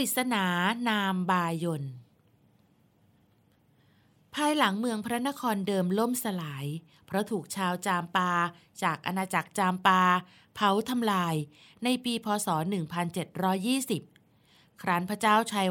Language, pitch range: Thai, 170-215 Hz